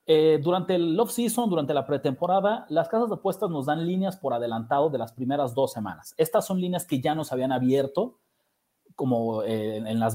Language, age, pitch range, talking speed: Spanish, 40-59, 130-195 Hz, 195 wpm